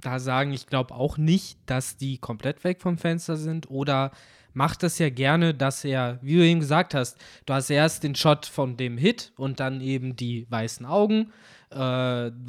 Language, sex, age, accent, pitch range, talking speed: German, male, 20-39, German, 130-165 Hz, 190 wpm